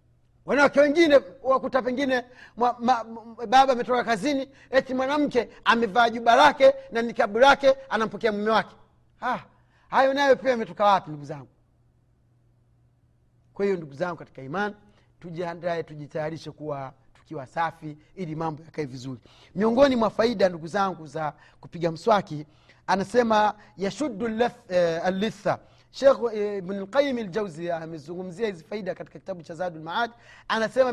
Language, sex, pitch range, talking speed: Swahili, male, 165-235 Hz, 120 wpm